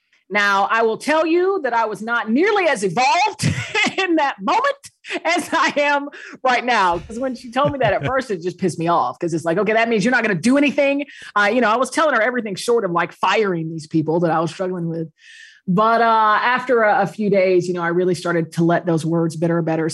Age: 30-49